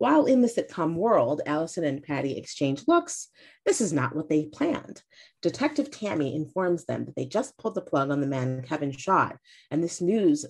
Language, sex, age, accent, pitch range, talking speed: English, female, 30-49, American, 145-205 Hz, 195 wpm